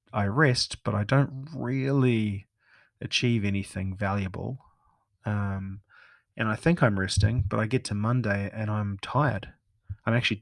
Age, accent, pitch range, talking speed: 30-49, Australian, 100-120 Hz, 145 wpm